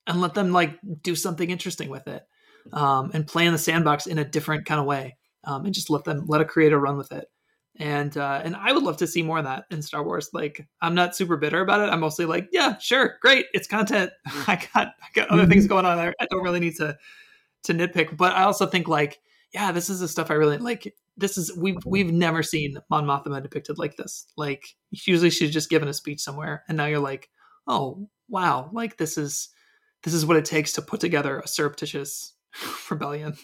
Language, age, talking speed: English, 20-39, 230 wpm